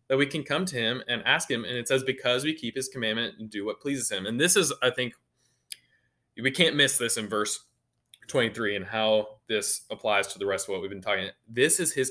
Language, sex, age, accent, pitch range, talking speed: English, male, 20-39, American, 115-140 Hz, 245 wpm